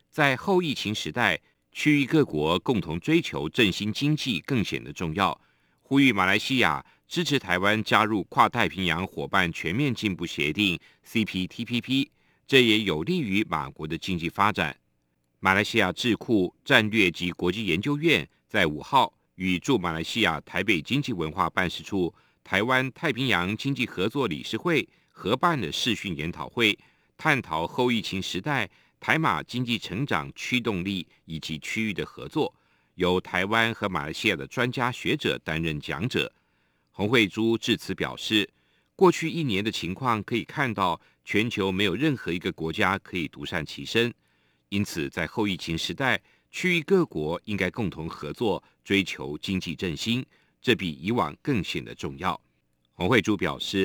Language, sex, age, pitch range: Chinese, male, 50-69, 85-120 Hz